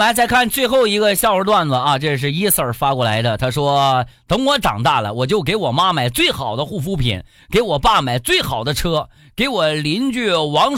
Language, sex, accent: Chinese, male, native